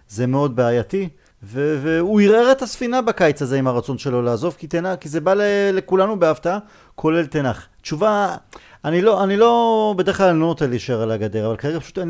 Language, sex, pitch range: Hebrew, male, 135-185 Hz